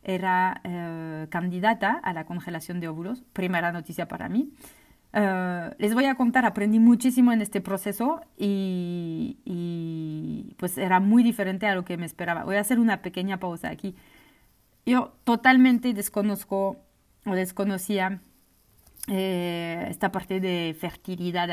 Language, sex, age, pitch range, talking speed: French, female, 30-49, 180-235 Hz, 140 wpm